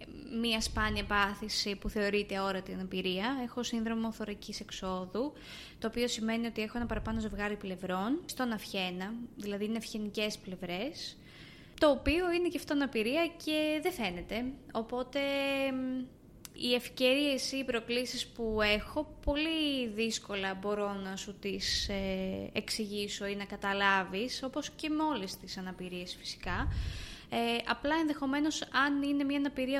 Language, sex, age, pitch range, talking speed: Greek, female, 20-39, 205-265 Hz, 130 wpm